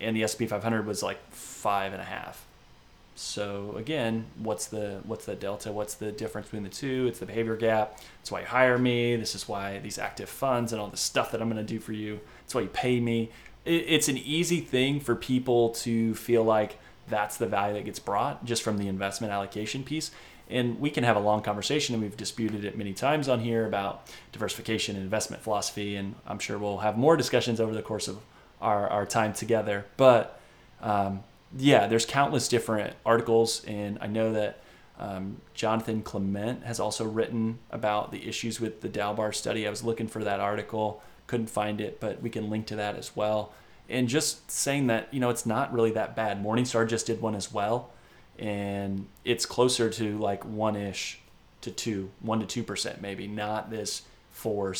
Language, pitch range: English, 105-115 Hz